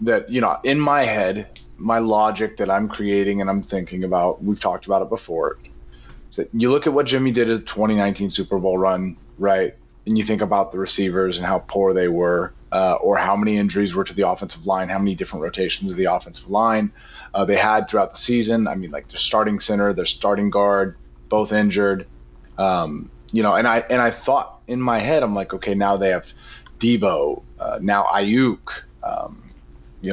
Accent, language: American, English